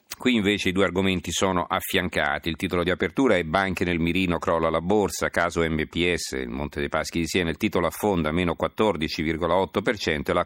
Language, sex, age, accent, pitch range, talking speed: Italian, male, 50-69, native, 80-95 Hz, 190 wpm